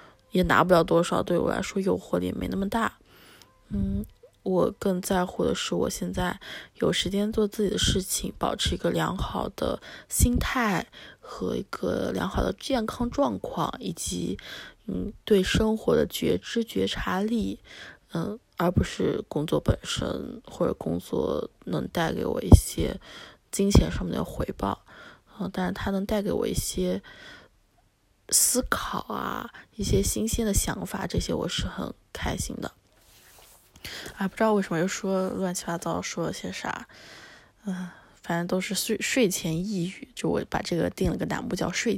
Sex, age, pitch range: female, 20-39, 175-225 Hz